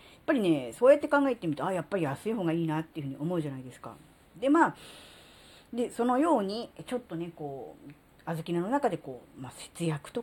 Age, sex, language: 40-59, female, Japanese